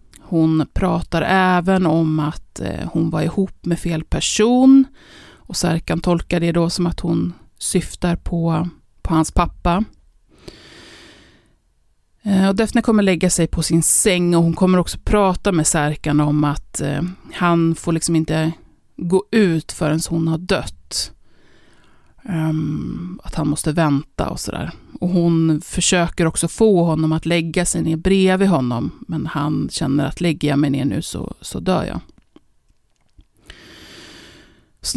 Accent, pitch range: native, 160-185 Hz